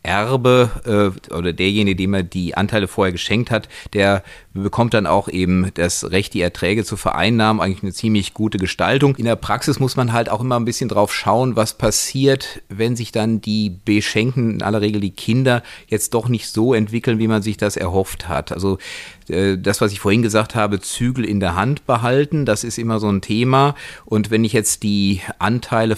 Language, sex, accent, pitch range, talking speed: German, male, German, 95-115 Hz, 195 wpm